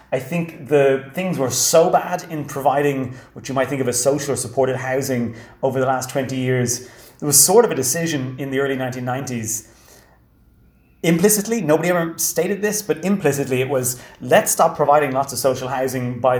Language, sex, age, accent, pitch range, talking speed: English, male, 30-49, British, 125-150 Hz, 185 wpm